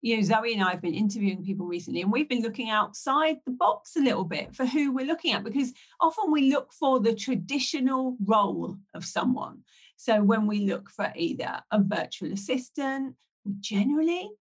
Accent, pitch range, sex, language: British, 210-275 Hz, female, English